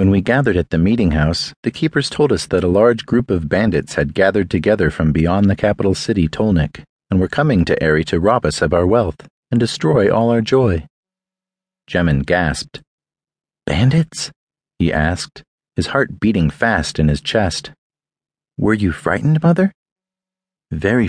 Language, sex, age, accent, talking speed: English, male, 40-59, American, 170 wpm